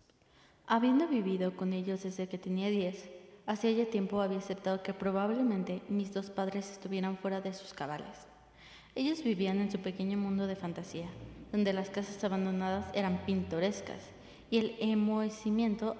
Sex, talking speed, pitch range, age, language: female, 150 wpm, 190-210 Hz, 20-39, English